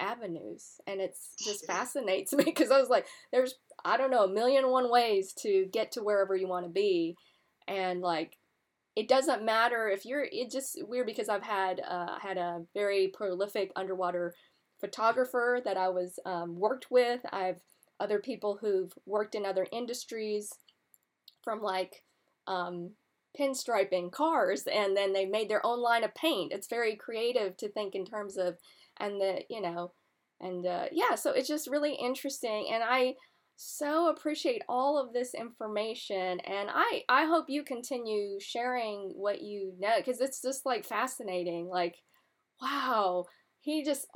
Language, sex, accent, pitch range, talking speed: English, female, American, 195-265 Hz, 165 wpm